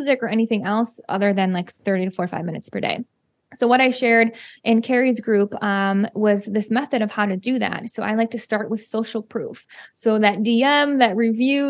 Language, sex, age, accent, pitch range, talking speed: English, female, 20-39, American, 215-265 Hz, 210 wpm